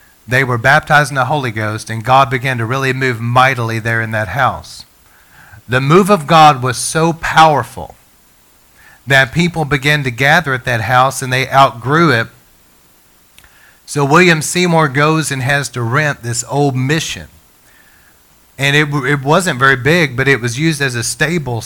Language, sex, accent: English, male, American